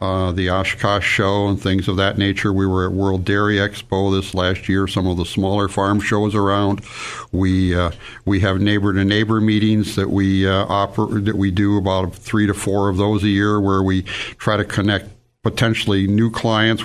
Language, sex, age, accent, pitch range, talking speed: English, male, 60-79, American, 95-105 Hz, 190 wpm